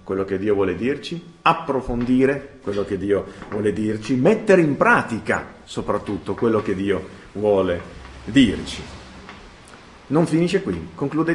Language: Italian